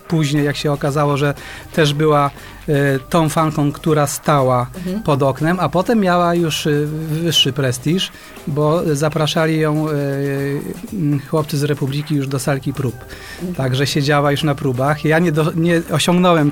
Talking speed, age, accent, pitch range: 140 wpm, 30-49, native, 155-185 Hz